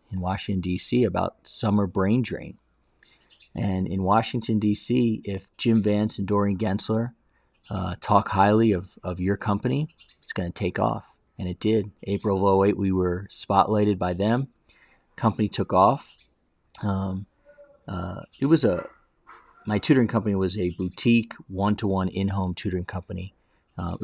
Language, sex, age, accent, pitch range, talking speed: English, male, 40-59, American, 90-110 Hz, 145 wpm